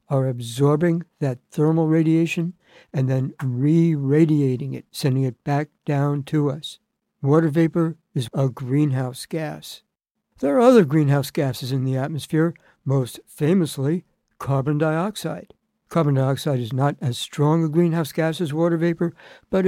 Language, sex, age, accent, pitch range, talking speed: English, male, 60-79, American, 135-165 Hz, 140 wpm